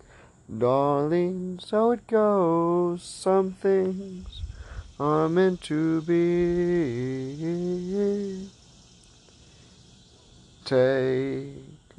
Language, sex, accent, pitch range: English, male, American, 120-165 Hz